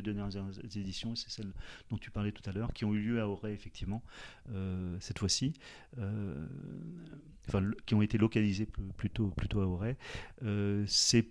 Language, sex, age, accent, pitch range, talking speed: French, male, 40-59, French, 95-115 Hz, 165 wpm